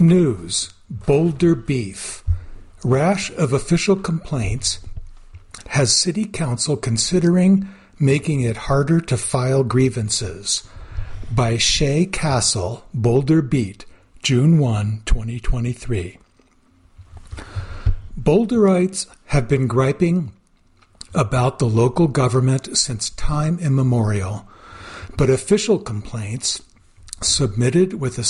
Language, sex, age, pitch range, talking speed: English, male, 60-79, 110-155 Hz, 90 wpm